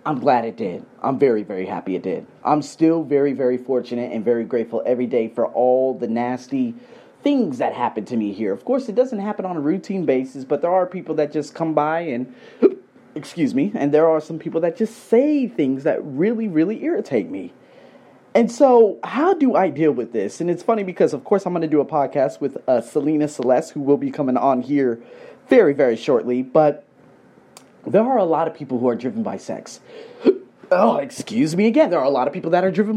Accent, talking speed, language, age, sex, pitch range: American, 220 wpm, English, 30-49, male, 125-205 Hz